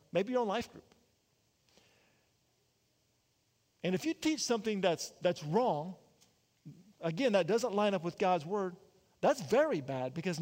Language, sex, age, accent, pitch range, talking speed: English, male, 50-69, American, 170-235 Hz, 145 wpm